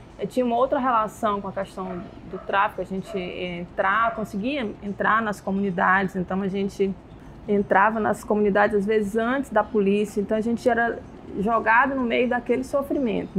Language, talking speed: Portuguese, 165 wpm